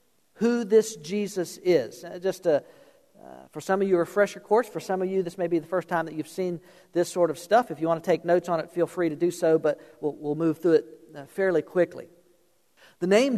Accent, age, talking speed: American, 50-69, 240 wpm